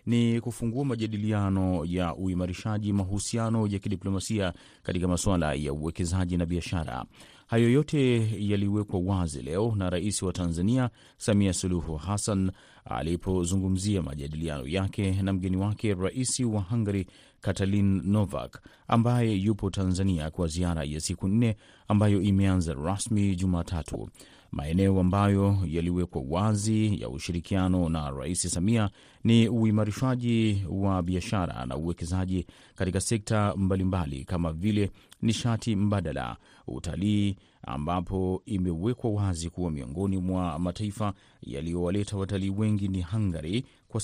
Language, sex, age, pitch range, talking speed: Swahili, male, 30-49, 90-105 Hz, 115 wpm